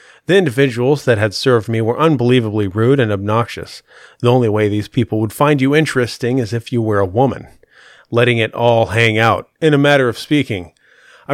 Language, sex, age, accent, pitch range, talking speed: English, male, 30-49, American, 110-140 Hz, 195 wpm